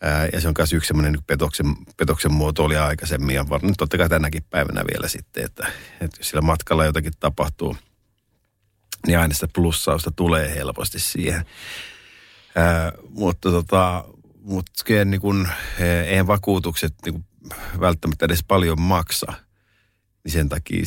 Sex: male